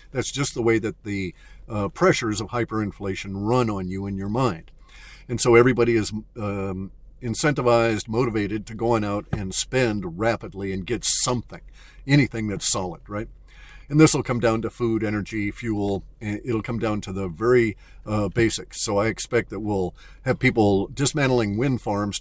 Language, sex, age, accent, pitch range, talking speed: English, male, 50-69, American, 105-125 Hz, 175 wpm